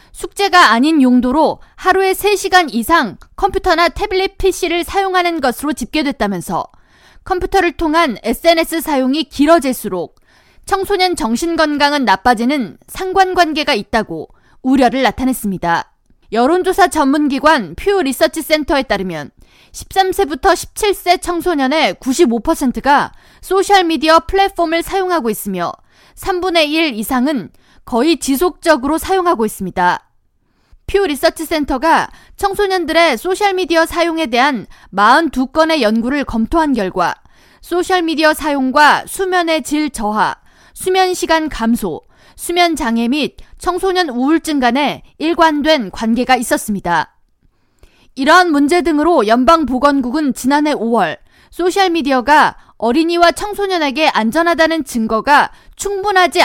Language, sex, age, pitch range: Korean, female, 20-39, 255-355 Hz